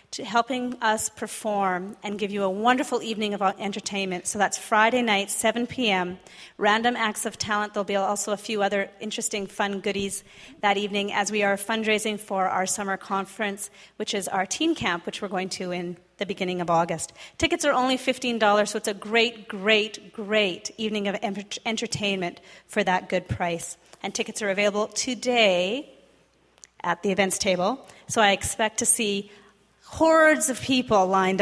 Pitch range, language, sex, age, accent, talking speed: 195-240 Hz, English, female, 30-49, American, 170 wpm